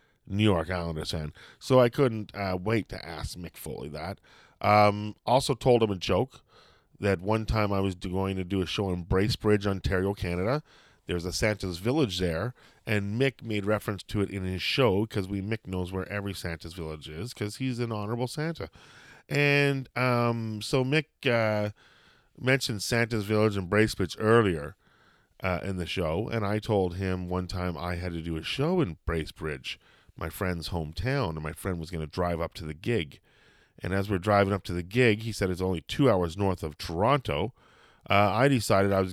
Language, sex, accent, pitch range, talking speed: English, male, American, 90-125 Hz, 195 wpm